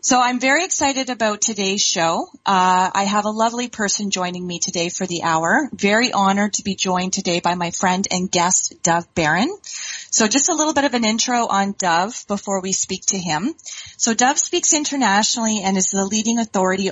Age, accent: 30-49, American